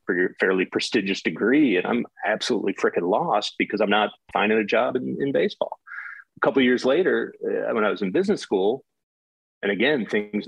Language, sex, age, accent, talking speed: English, male, 40-59, American, 190 wpm